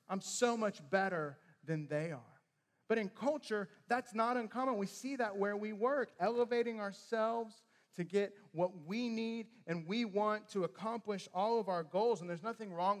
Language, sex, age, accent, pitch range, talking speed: English, male, 40-59, American, 160-205 Hz, 180 wpm